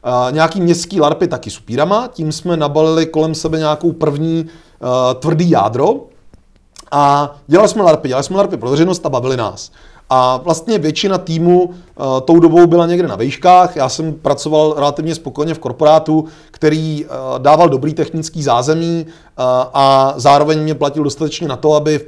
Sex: male